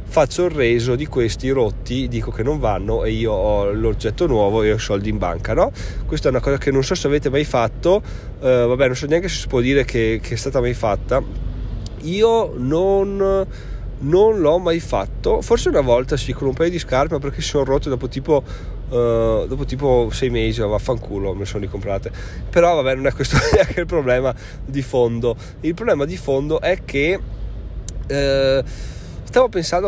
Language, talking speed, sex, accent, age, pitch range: Italian, 200 wpm, male, native, 30-49, 115-145 Hz